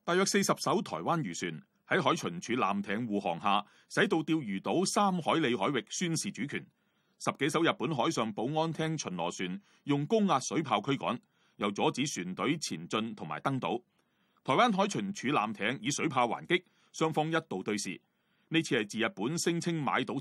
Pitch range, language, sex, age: 130-195 Hz, Chinese, male, 30-49